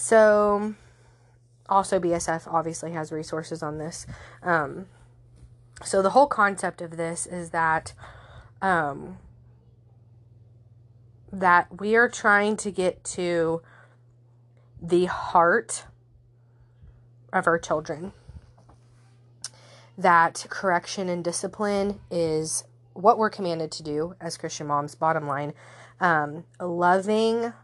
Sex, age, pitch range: female, 20-39, 140-185 Hz